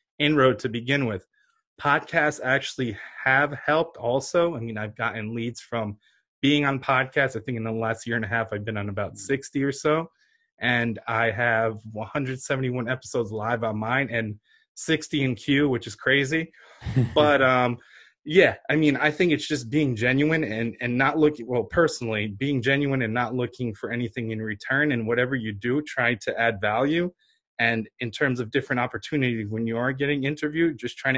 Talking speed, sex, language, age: 185 wpm, male, English, 20-39